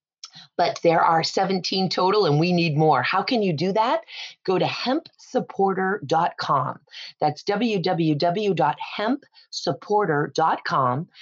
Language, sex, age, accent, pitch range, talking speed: English, female, 40-59, American, 145-190 Hz, 100 wpm